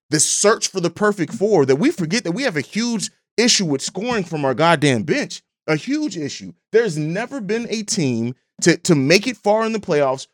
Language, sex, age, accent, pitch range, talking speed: English, male, 30-49, American, 145-185 Hz, 215 wpm